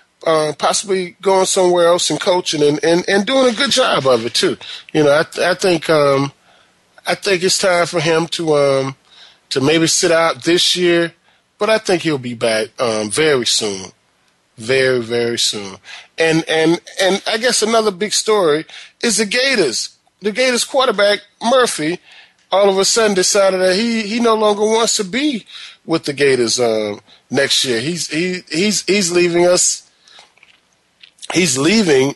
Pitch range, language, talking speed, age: 125-190 Hz, English, 170 wpm, 30-49